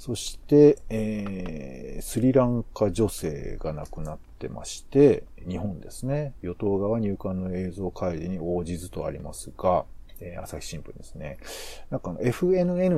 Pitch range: 90-140 Hz